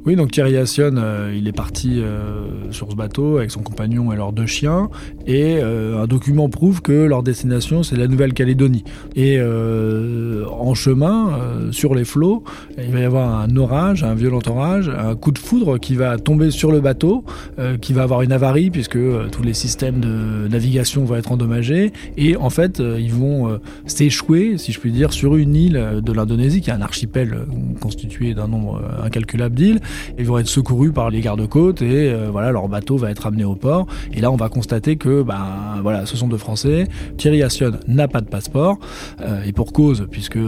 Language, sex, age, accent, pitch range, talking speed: French, male, 20-39, French, 110-145 Hz, 195 wpm